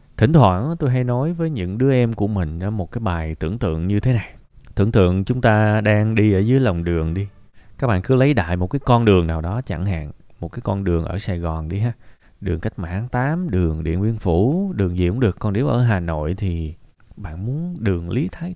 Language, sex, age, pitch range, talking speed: Vietnamese, male, 20-39, 90-125 Hz, 245 wpm